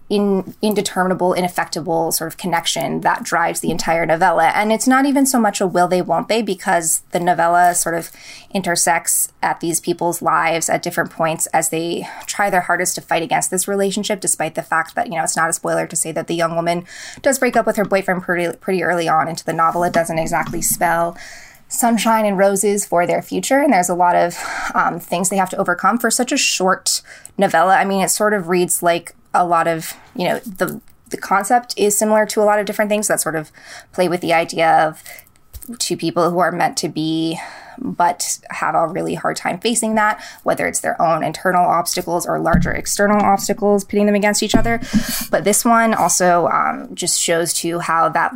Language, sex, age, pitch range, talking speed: English, female, 20-39, 165-205 Hz, 210 wpm